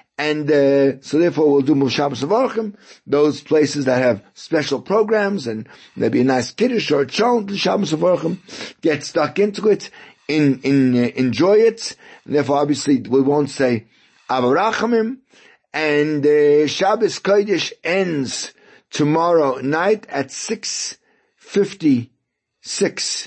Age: 60-79